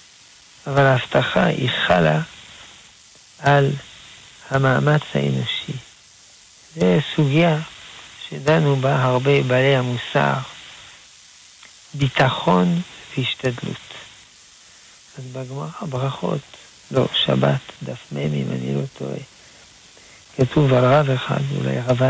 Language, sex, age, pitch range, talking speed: Hebrew, male, 60-79, 120-155 Hz, 90 wpm